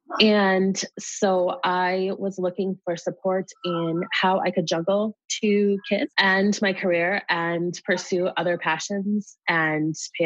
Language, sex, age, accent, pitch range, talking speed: English, female, 20-39, American, 170-230 Hz, 135 wpm